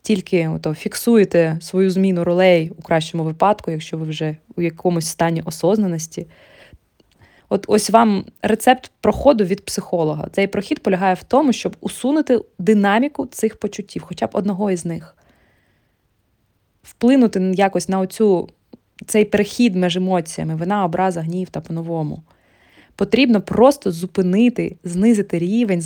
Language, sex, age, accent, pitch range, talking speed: Ukrainian, female, 20-39, native, 170-210 Hz, 125 wpm